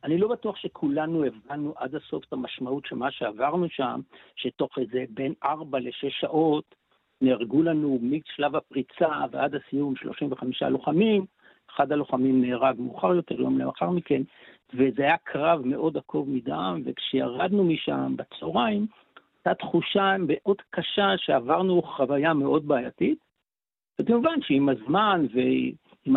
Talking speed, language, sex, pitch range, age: 130 wpm, Hebrew, male, 130-180 Hz, 60-79